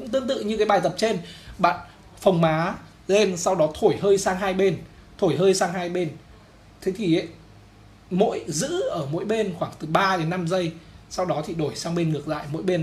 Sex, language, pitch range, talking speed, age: male, Vietnamese, 140-195 Hz, 220 wpm, 20-39